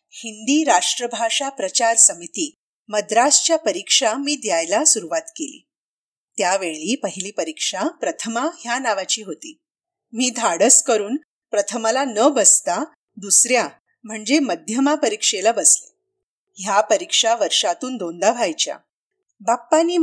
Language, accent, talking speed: Marathi, native, 100 wpm